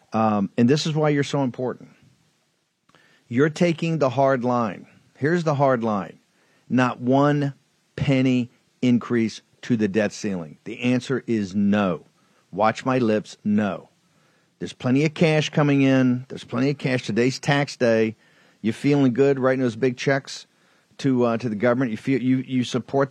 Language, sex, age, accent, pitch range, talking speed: English, male, 50-69, American, 110-135 Hz, 165 wpm